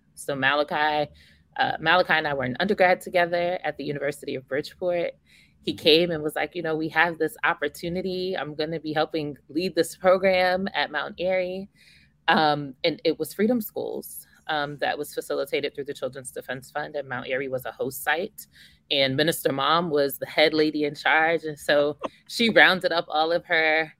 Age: 20-39